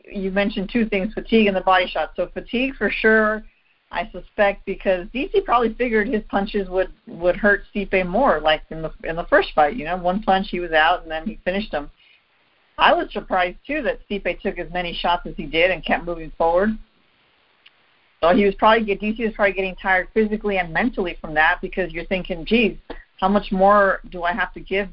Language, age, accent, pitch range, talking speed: English, 50-69, American, 180-215 Hz, 210 wpm